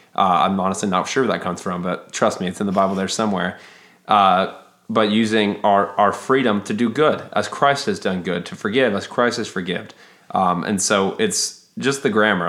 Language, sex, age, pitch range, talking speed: English, male, 20-39, 95-110 Hz, 215 wpm